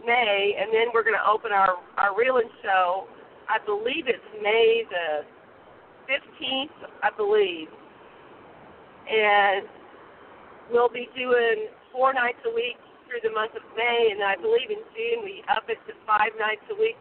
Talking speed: 160 wpm